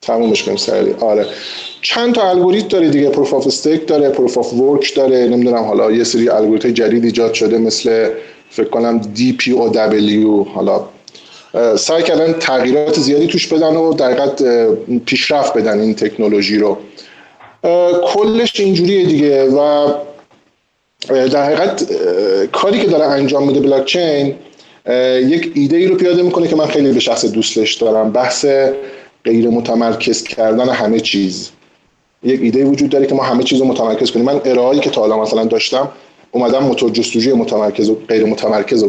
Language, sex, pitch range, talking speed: Persian, male, 115-150 Hz, 155 wpm